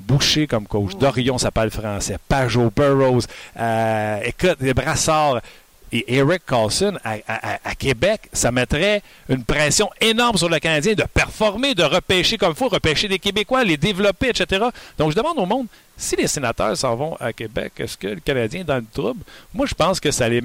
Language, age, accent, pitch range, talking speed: French, 60-79, Canadian, 170-270 Hz, 195 wpm